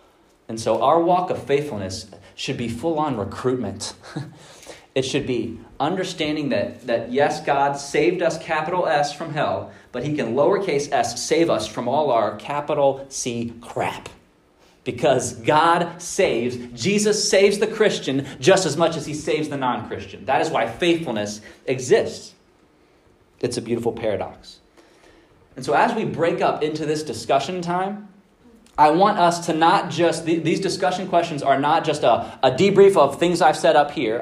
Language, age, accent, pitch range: English, 30-49, American, 130-175 Hz